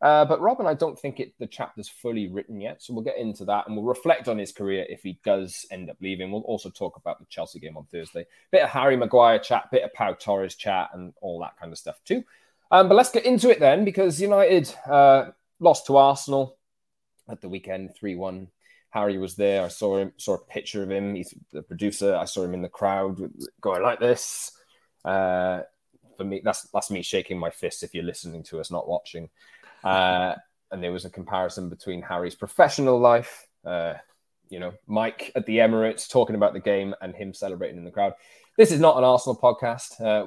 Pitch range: 95-135 Hz